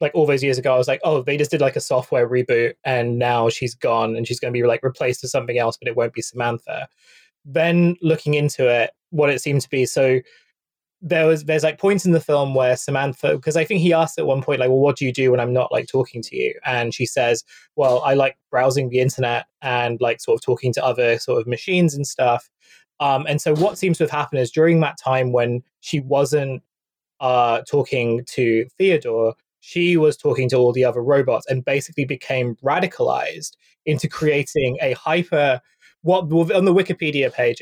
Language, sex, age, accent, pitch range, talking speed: English, male, 20-39, British, 125-160 Hz, 220 wpm